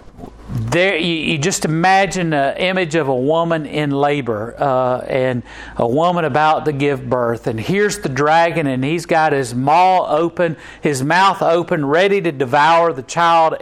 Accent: American